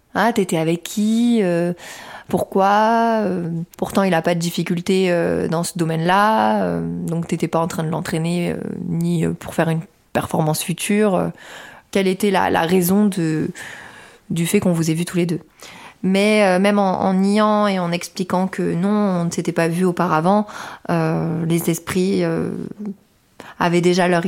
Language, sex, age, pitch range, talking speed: French, female, 30-49, 170-205 Hz, 180 wpm